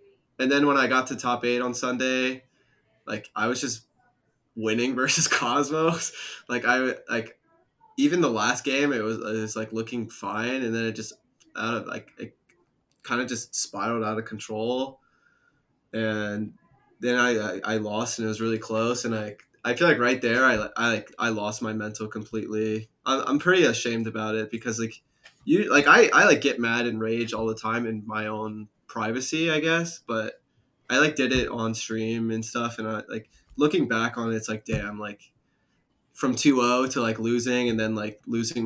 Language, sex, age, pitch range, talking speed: English, male, 20-39, 110-125 Hz, 195 wpm